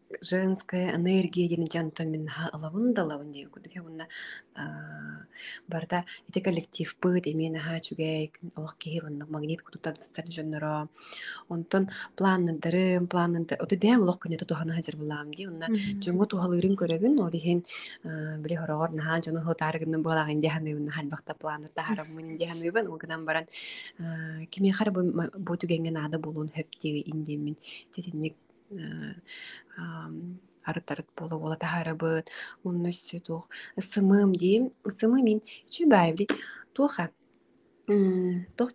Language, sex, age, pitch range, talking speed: Russian, female, 20-39, 160-195 Hz, 55 wpm